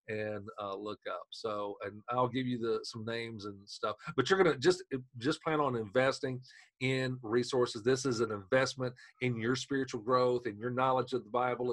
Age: 40-59